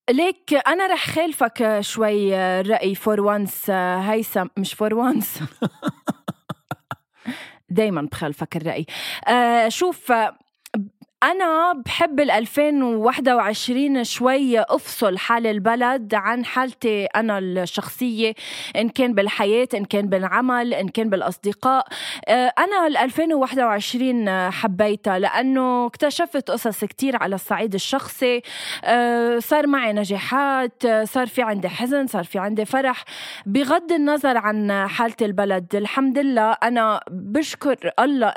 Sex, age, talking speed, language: female, 20-39, 110 wpm, Arabic